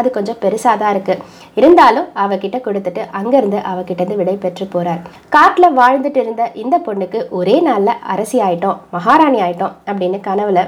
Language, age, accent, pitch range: Tamil, 20-39, native, 190-240 Hz